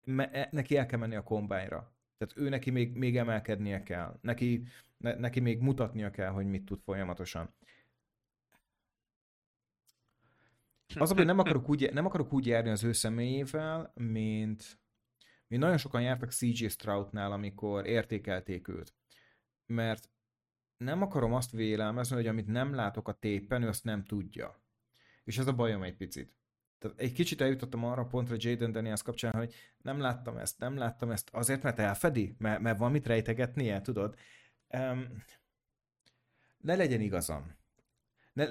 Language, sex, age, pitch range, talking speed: Hungarian, male, 30-49, 105-125 Hz, 150 wpm